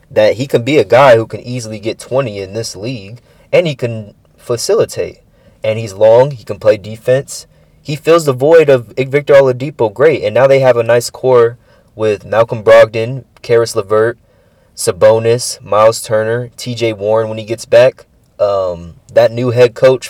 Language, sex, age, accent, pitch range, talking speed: English, male, 20-39, American, 110-155 Hz, 175 wpm